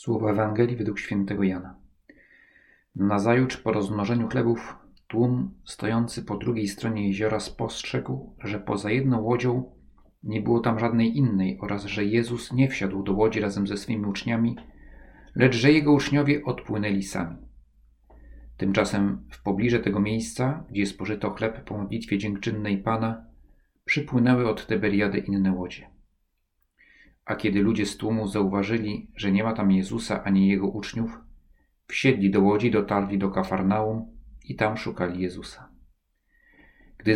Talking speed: 135 wpm